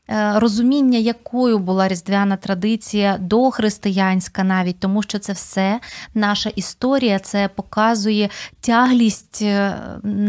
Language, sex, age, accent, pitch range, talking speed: Ukrainian, female, 20-39, native, 200-245 Hz, 95 wpm